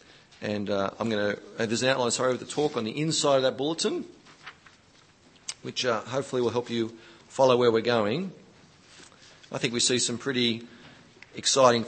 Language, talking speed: English, 180 wpm